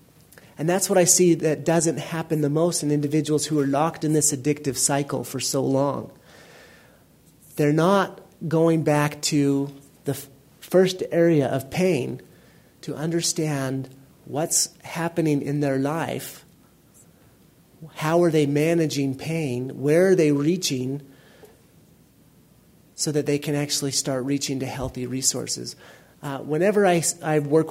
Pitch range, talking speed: 140-165 Hz, 135 wpm